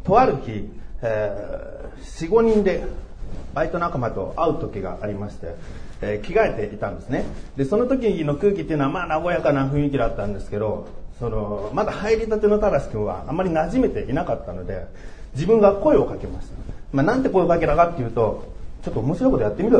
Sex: male